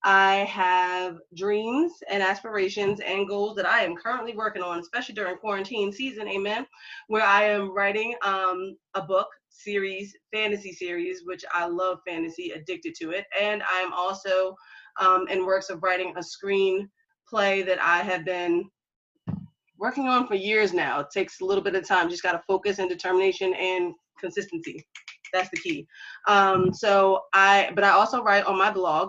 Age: 20-39